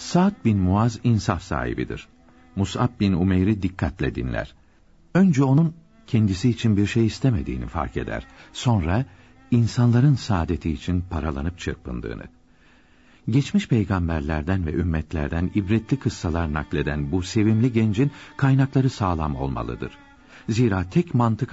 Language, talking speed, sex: Turkish, 115 wpm, male